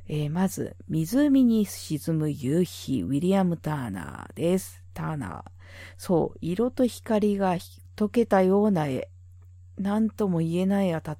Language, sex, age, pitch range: Japanese, female, 40-59, 140-205 Hz